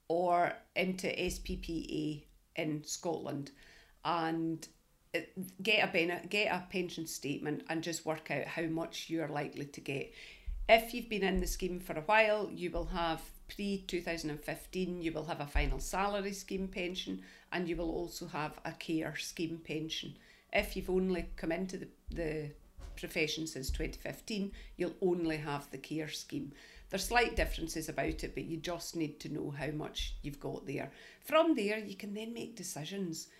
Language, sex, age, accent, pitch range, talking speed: English, female, 40-59, British, 160-190 Hz, 160 wpm